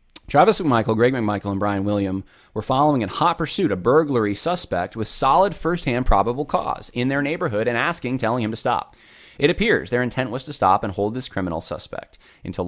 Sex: male